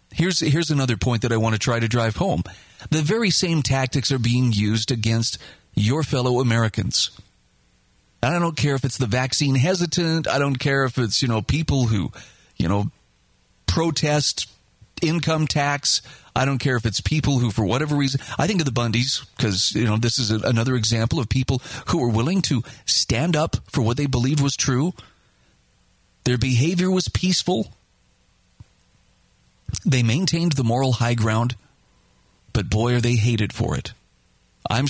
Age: 40-59